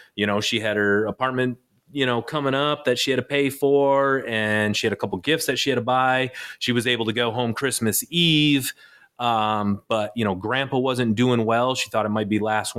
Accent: American